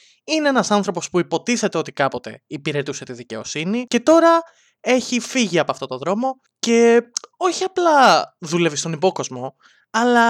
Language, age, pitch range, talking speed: English, 20-39, 145-210 Hz, 145 wpm